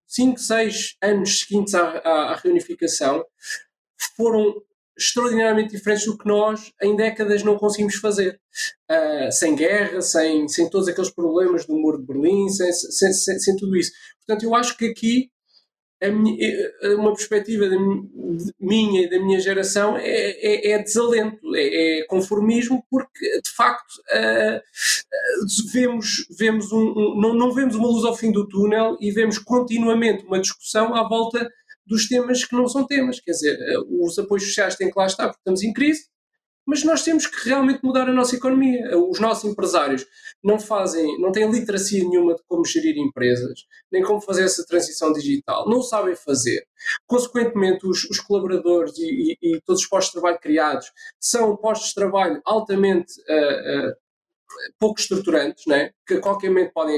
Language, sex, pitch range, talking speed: Portuguese, male, 190-250 Hz, 165 wpm